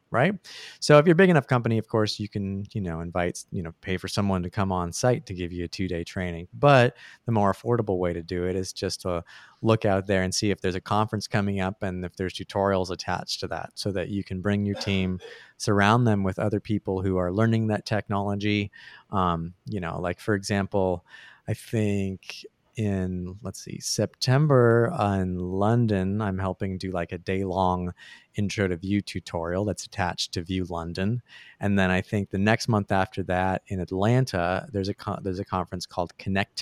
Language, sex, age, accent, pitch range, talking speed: English, male, 30-49, American, 95-110 Hz, 205 wpm